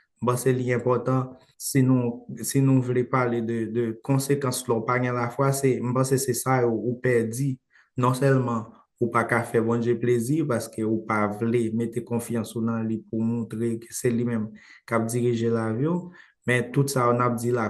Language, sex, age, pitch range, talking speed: English, male, 20-39, 115-130 Hz, 195 wpm